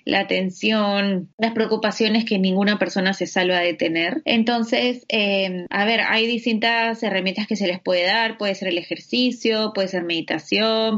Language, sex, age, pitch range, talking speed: Spanish, female, 20-39, 180-220 Hz, 165 wpm